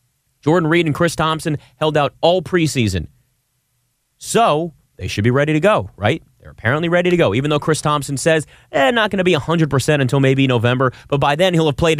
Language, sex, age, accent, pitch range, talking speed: English, male, 30-49, American, 120-150 Hz, 210 wpm